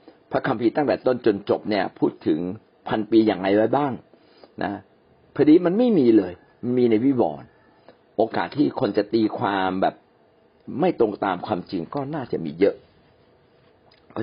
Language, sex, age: Thai, male, 60-79